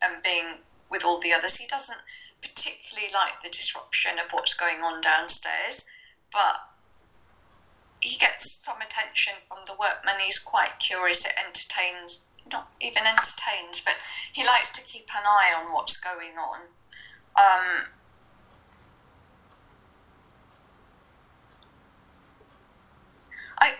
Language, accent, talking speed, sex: English, British, 115 wpm, female